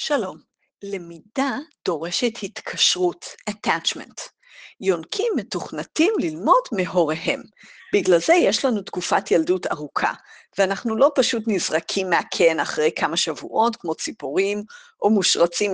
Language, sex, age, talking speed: Hebrew, female, 50-69, 105 wpm